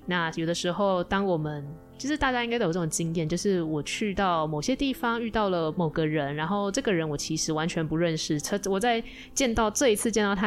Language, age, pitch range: Chinese, 20-39, 160-200 Hz